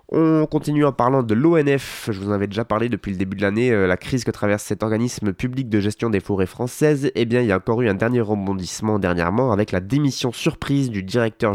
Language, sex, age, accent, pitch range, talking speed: French, male, 20-39, French, 100-125 Hz, 245 wpm